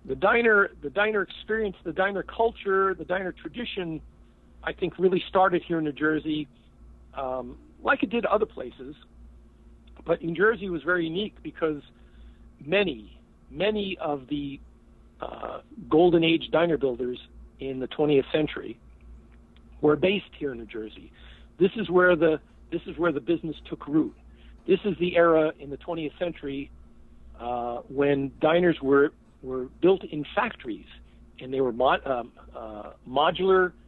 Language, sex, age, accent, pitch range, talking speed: English, male, 50-69, American, 135-190 Hz, 150 wpm